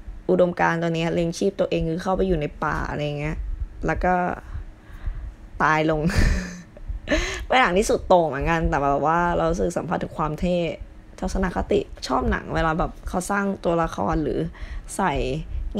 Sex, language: female, Thai